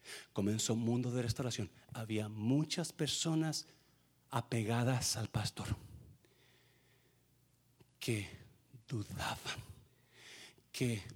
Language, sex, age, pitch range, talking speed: Spanish, male, 50-69, 120-175 Hz, 75 wpm